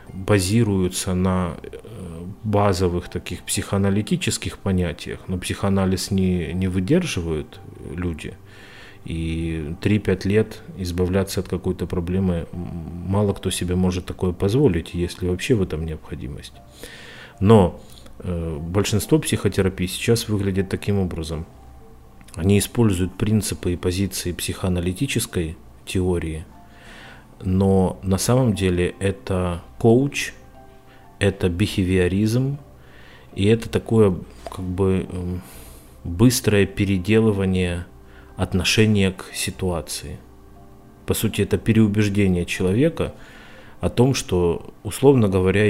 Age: 30-49